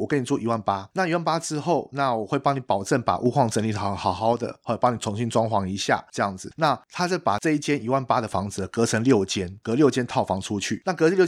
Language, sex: Chinese, male